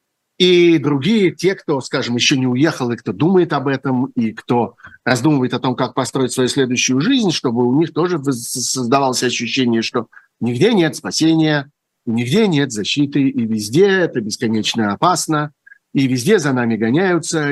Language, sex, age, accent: Russian, male, 50-69, native